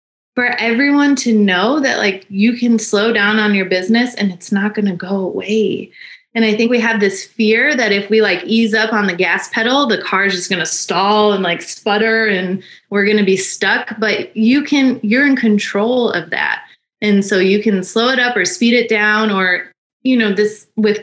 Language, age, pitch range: English, 20-39, 190-235 Hz